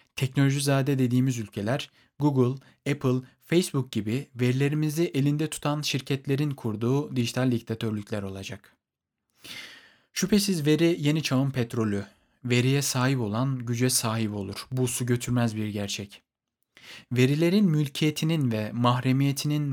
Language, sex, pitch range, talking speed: Turkish, male, 115-140 Hz, 105 wpm